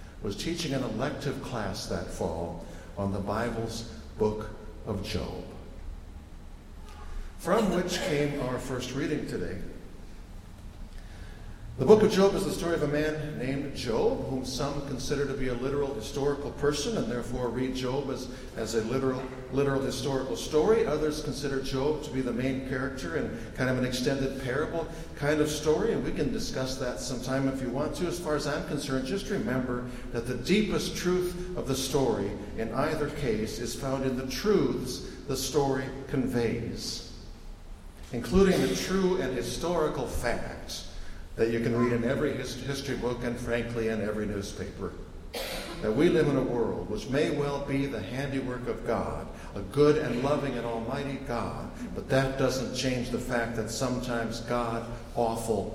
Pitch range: 105-140 Hz